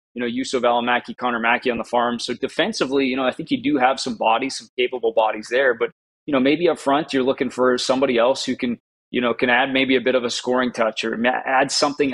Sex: male